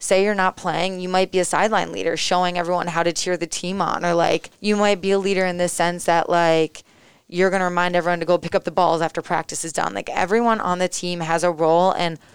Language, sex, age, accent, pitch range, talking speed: English, female, 20-39, American, 170-195 Hz, 260 wpm